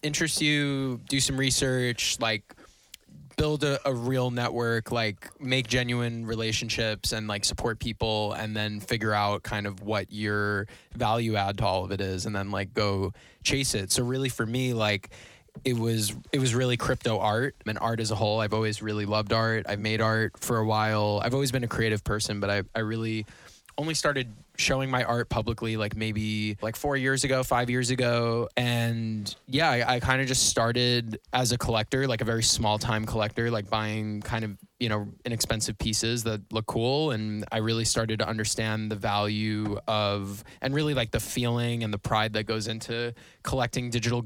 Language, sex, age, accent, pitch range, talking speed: English, male, 20-39, American, 110-125 Hz, 195 wpm